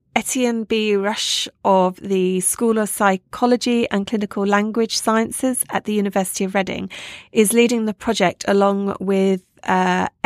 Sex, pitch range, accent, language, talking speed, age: female, 185-225 Hz, British, English, 140 wpm, 30-49